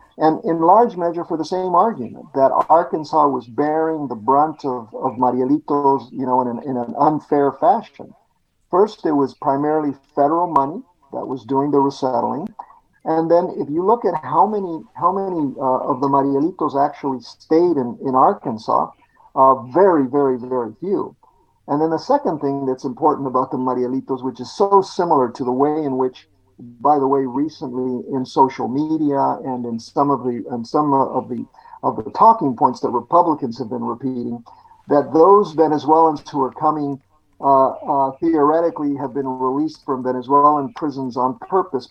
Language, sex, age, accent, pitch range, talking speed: English, male, 50-69, American, 130-155 Hz, 175 wpm